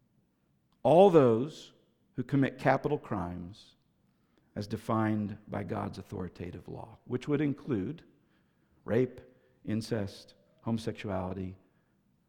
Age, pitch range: 50-69, 100-130 Hz